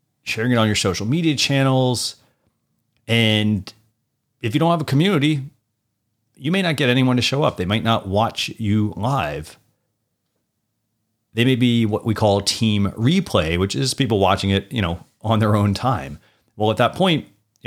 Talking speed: 175 wpm